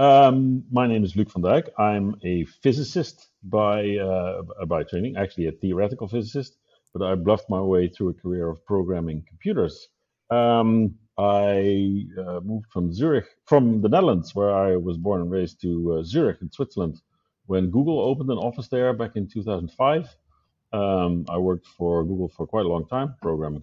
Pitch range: 90-125 Hz